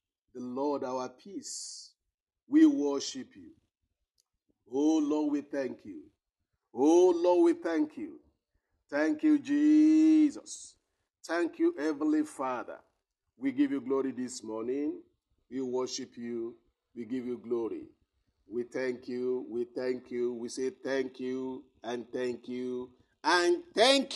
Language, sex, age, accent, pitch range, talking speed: English, male, 50-69, Nigerian, 120-155 Hz, 130 wpm